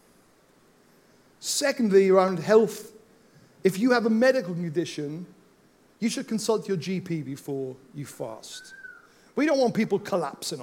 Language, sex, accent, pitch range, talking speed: English, male, British, 165-225 Hz, 125 wpm